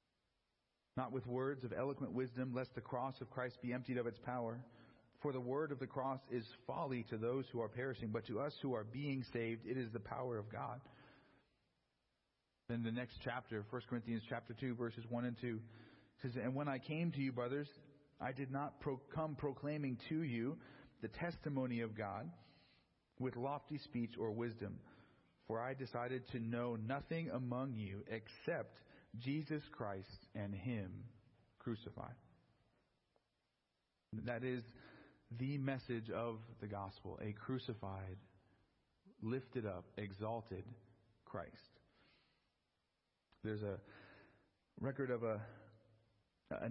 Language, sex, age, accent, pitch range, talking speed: English, male, 40-59, American, 110-130 Hz, 145 wpm